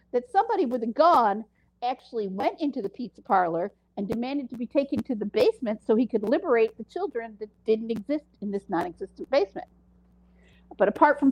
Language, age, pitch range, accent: English, 50-69, 190-265 Hz, American